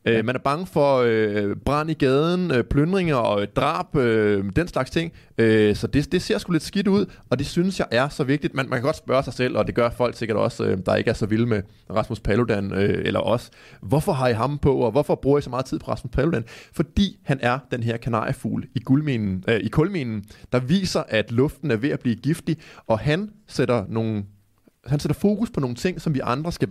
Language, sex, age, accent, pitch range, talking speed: Danish, male, 20-39, native, 110-140 Hz, 240 wpm